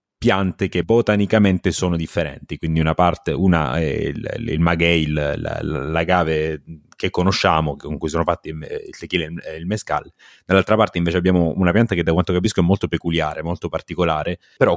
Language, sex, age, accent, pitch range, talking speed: Italian, male, 30-49, native, 85-100 Hz, 165 wpm